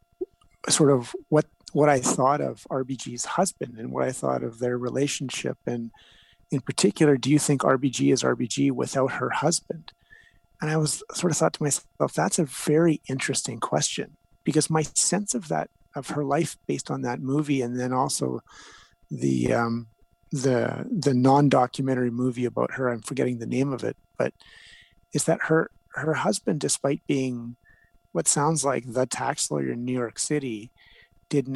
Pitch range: 125-150 Hz